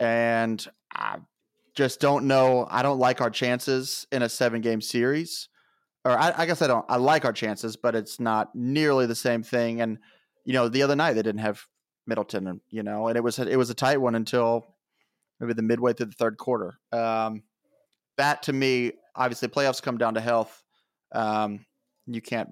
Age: 30-49